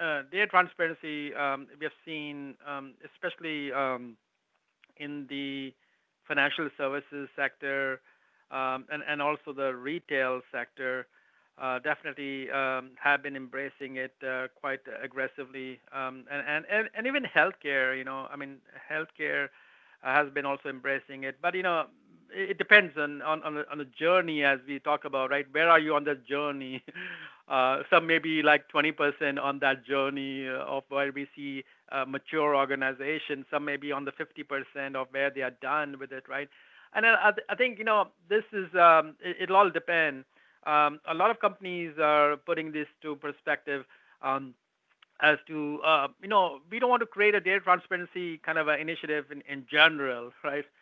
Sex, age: male, 60-79